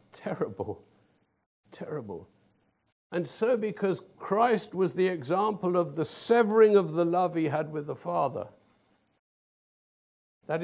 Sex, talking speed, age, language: male, 120 wpm, 60-79, English